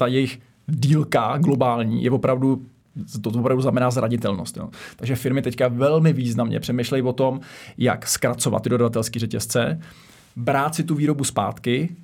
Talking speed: 145 wpm